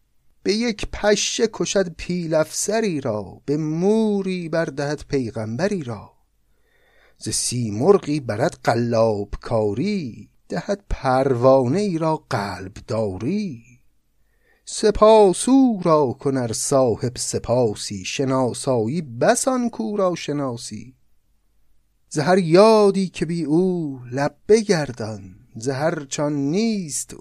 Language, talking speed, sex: Persian, 95 wpm, male